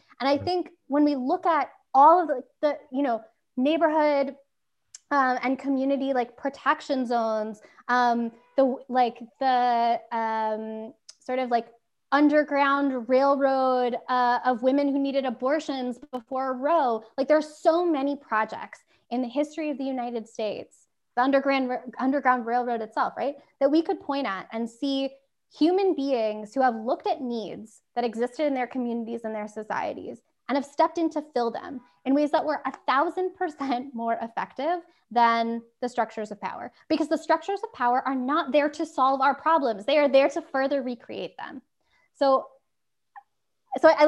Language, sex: English, female